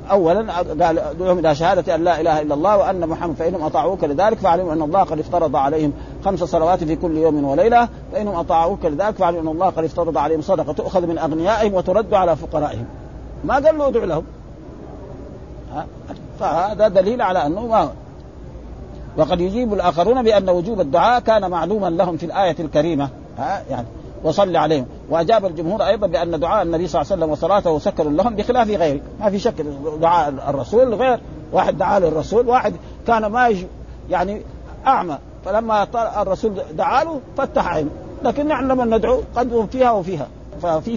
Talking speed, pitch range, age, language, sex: 160 wpm, 160-215 Hz, 50-69, Arabic, male